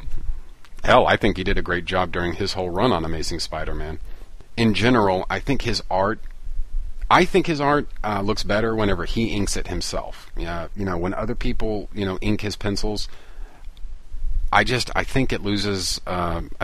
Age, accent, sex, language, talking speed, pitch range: 40-59, American, male, English, 185 wpm, 85-100 Hz